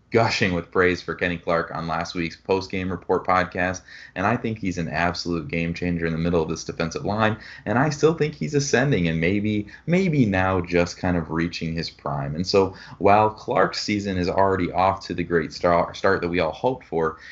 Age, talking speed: 30-49, 210 wpm